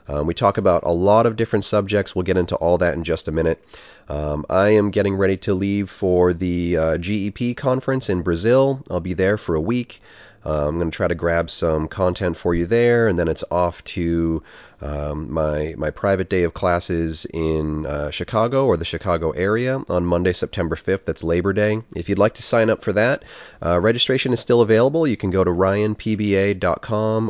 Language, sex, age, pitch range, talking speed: English, male, 30-49, 85-105 Hz, 205 wpm